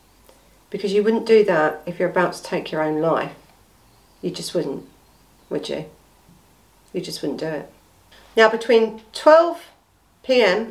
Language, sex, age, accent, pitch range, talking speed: English, female, 50-69, British, 175-215 Hz, 150 wpm